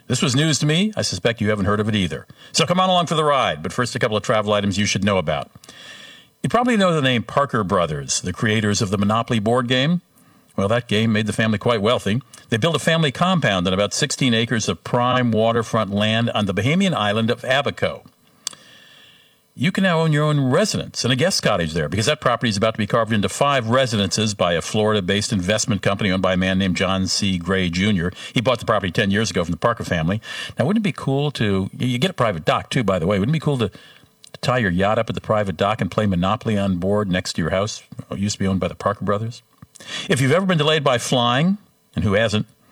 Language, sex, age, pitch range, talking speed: English, male, 50-69, 100-130 Hz, 250 wpm